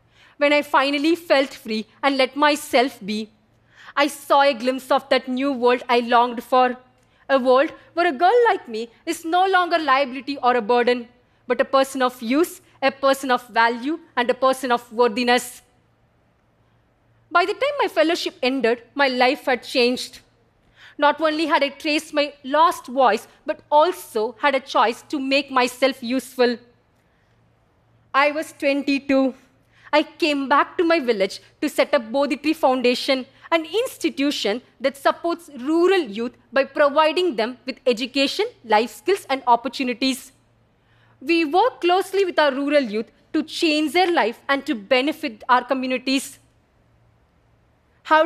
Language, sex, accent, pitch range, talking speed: Russian, female, Indian, 250-310 Hz, 150 wpm